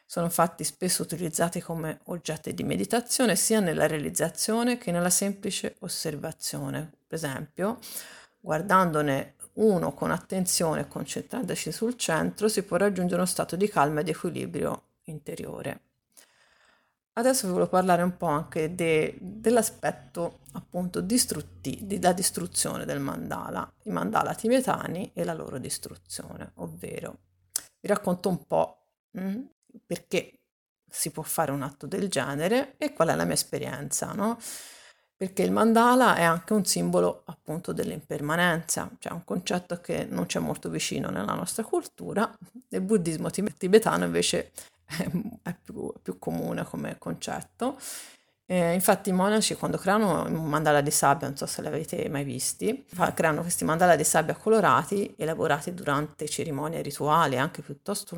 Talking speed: 140 wpm